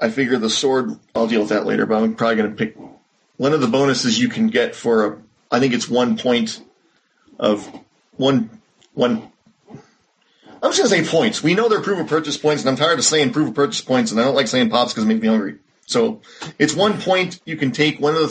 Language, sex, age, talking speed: English, male, 40-59, 250 wpm